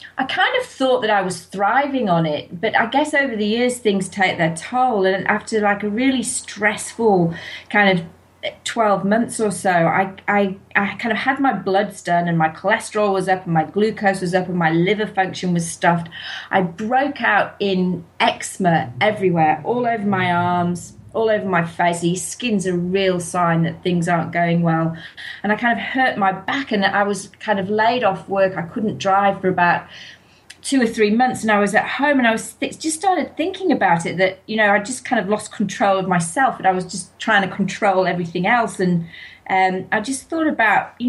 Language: English